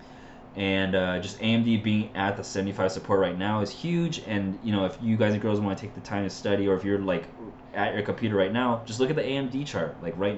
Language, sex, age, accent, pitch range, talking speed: English, male, 20-39, American, 95-120 Hz, 260 wpm